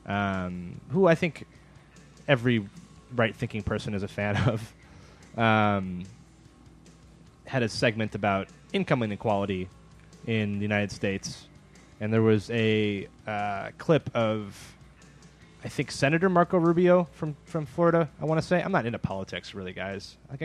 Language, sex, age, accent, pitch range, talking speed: English, male, 20-39, American, 100-140 Hz, 140 wpm